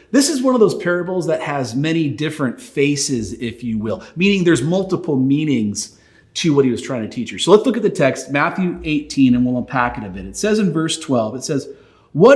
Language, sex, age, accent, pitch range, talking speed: English, male, 40-59, American, 135-195 Hz, 235 wpm